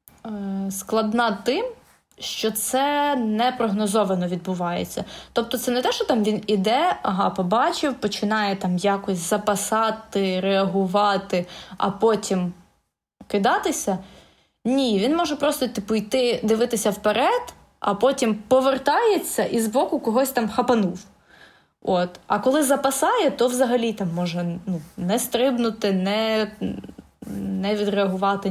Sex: female